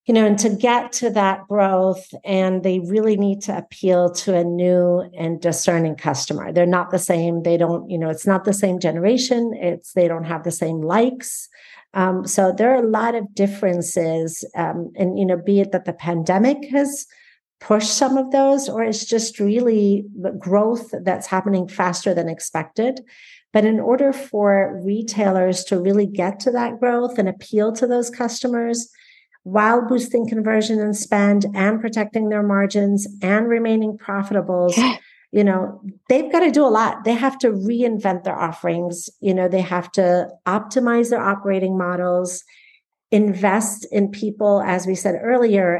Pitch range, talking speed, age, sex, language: 180-225 Hz, 170 wpm, 50-69, female, English